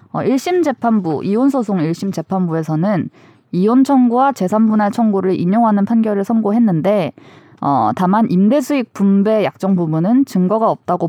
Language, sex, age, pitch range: Korean, female, 20-39, 170-240 Hz